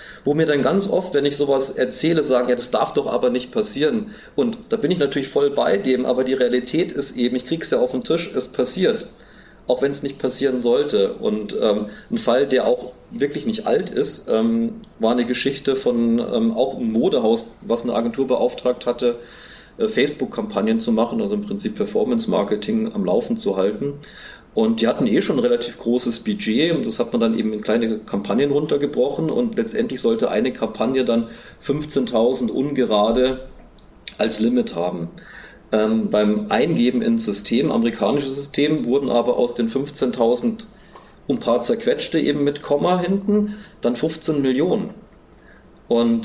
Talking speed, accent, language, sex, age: 175 wpm, German, German, male, 40-59